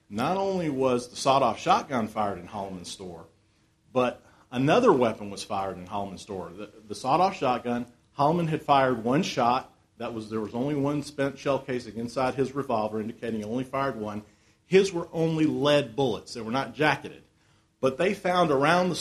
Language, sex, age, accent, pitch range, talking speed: English, male, 40-59, American, 110-155 Hz, 185 wpm